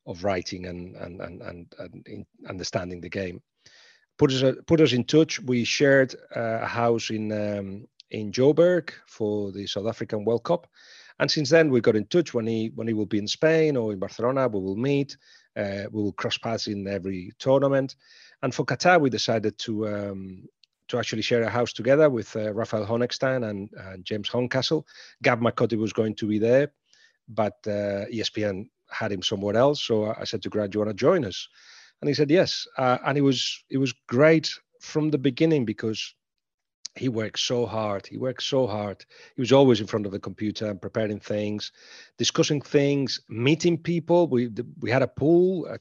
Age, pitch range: 40-59, 105-140 Hz